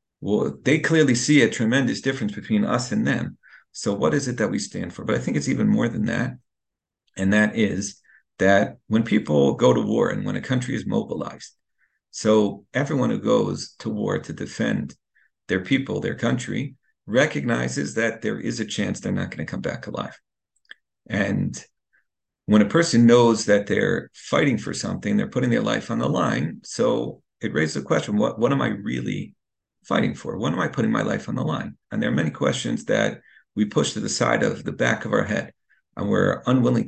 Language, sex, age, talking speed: English, male, 50-69, 205 wpm